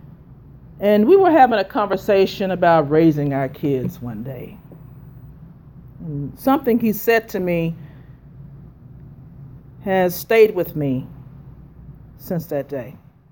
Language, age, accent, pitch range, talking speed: English, 40-59, American, 140-215 Hz, 110 wpm